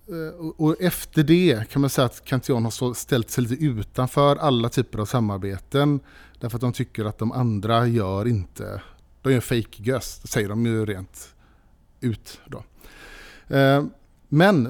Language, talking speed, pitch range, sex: Swedish, 155 wpm, 110-145 Hz, male